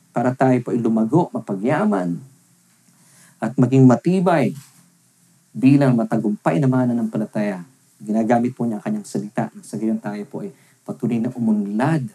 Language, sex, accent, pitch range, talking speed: English, male, Filipino, 125-165 Hz, 140 wpm